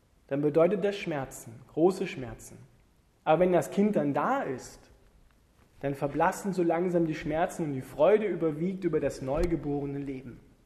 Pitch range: 135-195 Hz